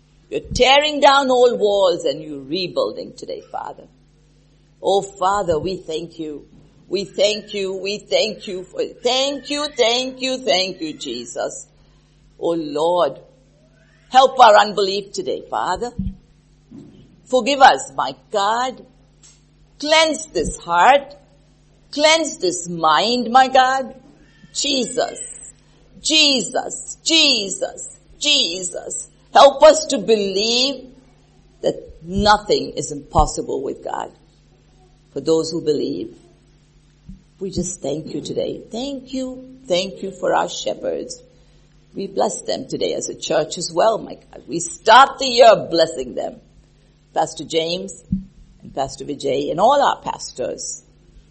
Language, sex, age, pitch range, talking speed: English, female, 50-69, 165-270 Hz, 120 wpm